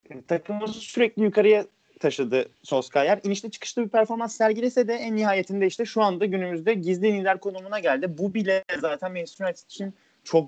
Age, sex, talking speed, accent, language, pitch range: 30-49, male, 155 wpm, native, Turkish, 165-230 Hz